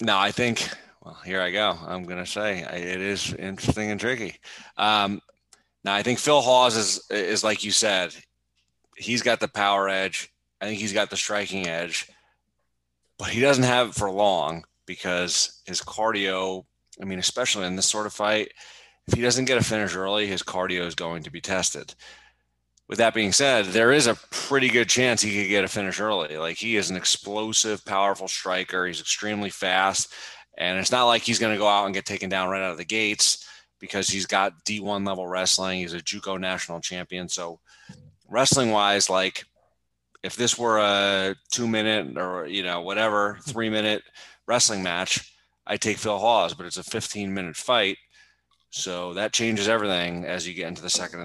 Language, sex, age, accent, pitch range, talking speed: English, male, 30-49, American, 90-105 Hz, 190 wpm